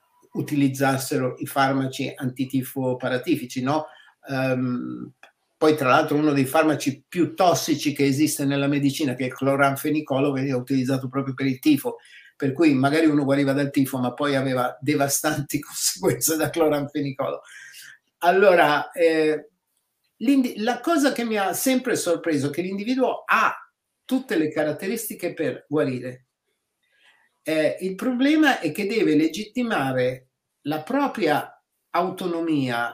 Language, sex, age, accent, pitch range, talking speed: Italian, male, 50-69, native, 135-180 Hz, 125 wpm